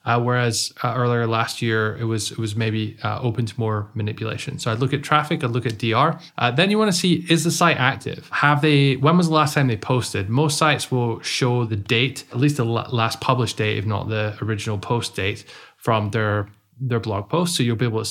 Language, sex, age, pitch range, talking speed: English, male, 20-39, 110-135 Hz, 240 wpm